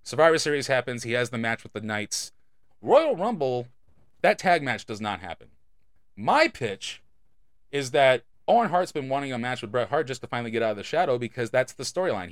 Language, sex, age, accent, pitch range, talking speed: English, male, 30-49, American, 120-185 Hz, 210 wpm